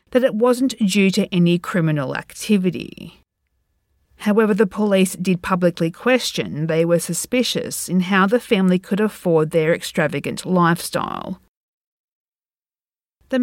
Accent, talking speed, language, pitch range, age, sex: Australian, 120 wpm, English, 165-215 Hz, 40-59, female